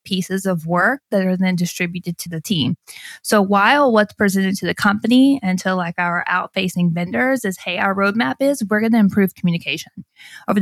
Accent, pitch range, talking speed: American, 175-215 Hz, 190 wpm